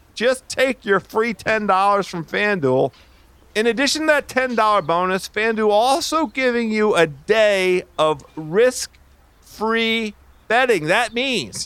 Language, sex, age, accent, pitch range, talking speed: English, male, 40-59, American, 175-245 Hz, 125 wpm